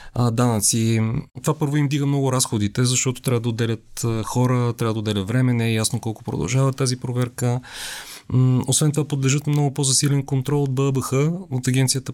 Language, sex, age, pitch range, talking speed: Bulgarian, male, 30-49, 120-140 Hz, 160 wpm